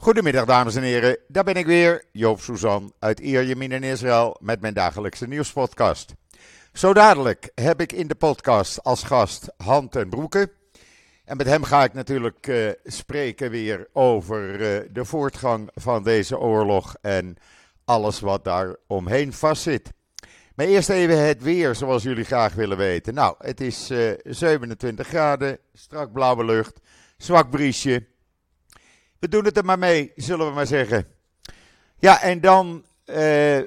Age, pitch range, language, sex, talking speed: 50-69, 105-145 Hz, Dutch, male, 155 wpm